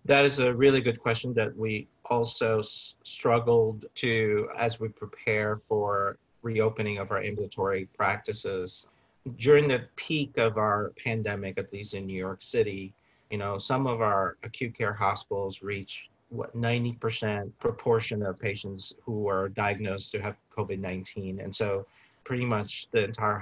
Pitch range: 100-115 Hz